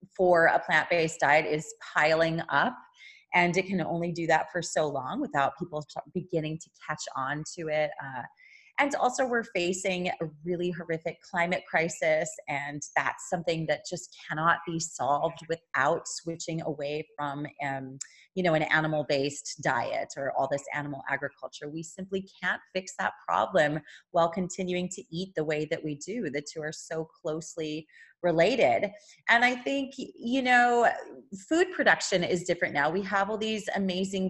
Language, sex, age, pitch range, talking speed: English, female, 30-49, 160-205 Hz, 165 wpm